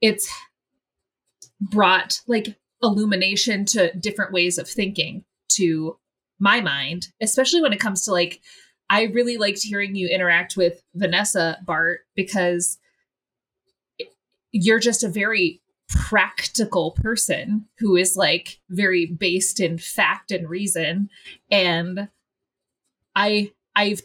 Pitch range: 175-215 Hz